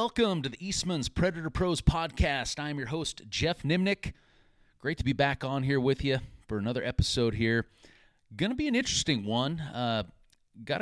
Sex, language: male, English